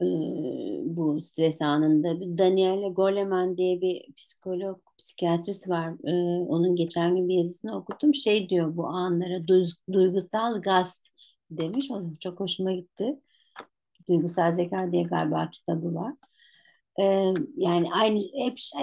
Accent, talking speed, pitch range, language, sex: native, 130 wpm, 175-215 Hz, Turkish, female